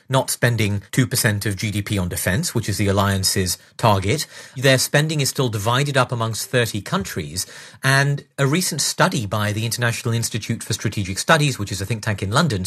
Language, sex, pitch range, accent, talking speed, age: English, male, 110-145 Hz, British, 185 wpm, 40-59